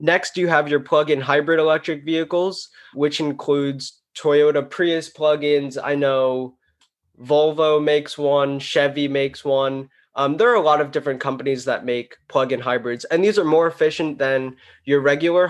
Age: 20-39